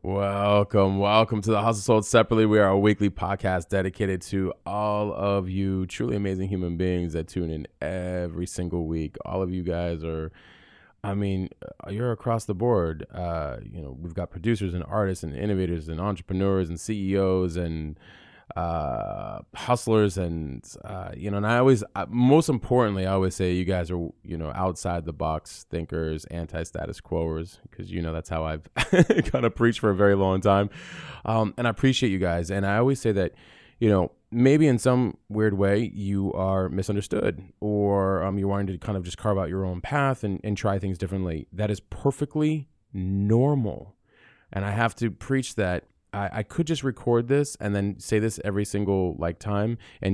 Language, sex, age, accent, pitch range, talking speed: English, male, 20-39, American, 90-110 Hz, 185 wpm